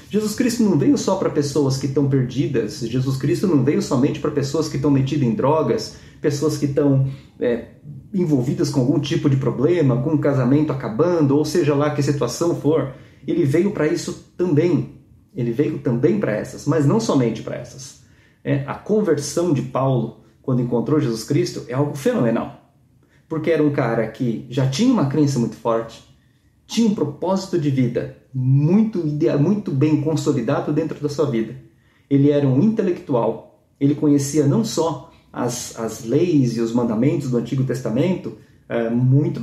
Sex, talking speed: male, 165 wpm